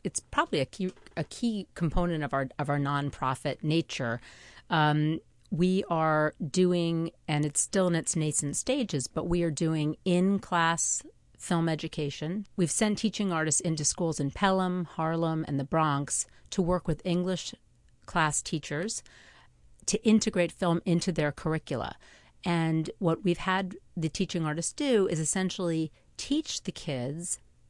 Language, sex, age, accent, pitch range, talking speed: English, female, 40-59, American, 150-185 Hz, 150 wpm